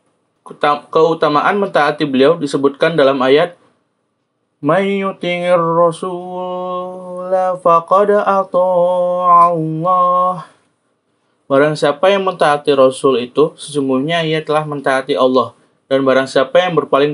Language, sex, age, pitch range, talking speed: Indonesian, male, 20-39, 140-180 Hz, 90 wpm